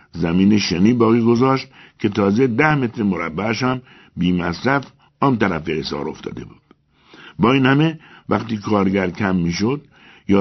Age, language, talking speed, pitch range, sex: 60-79, Persian, 135 wpm, 80-130 Hz, male